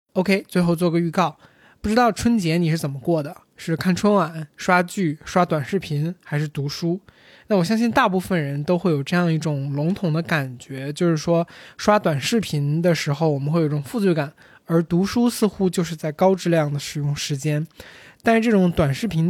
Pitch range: 155-195 Hz